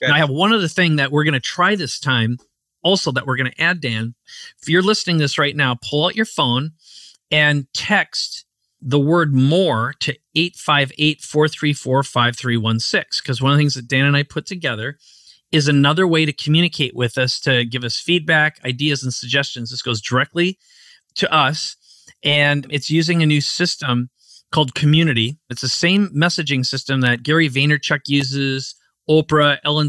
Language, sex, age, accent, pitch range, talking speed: English, male, 40-59, American, 130-155 Hz, 170 wpm